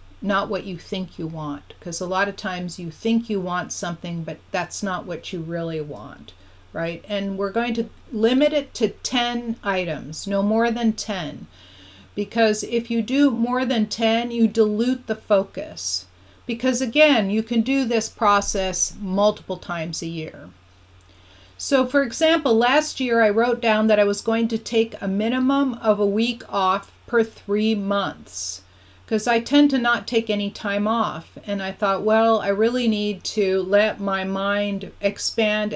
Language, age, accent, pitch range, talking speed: English, 40-59, American, 180-225 Hz, 175 wpm